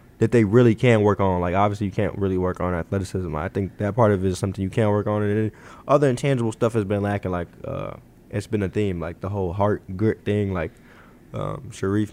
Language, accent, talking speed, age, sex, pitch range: English, American, 245 wpm, 20-39, male, 95-115 Hz